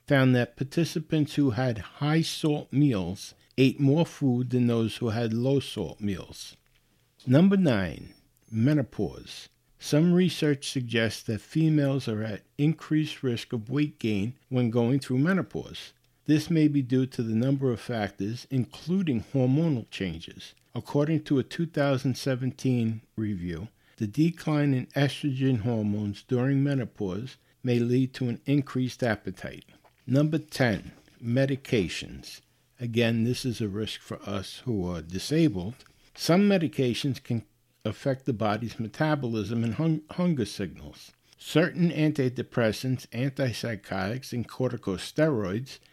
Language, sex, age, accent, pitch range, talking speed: English, male, 60-79, American, 115-145 Hz, 120 wpm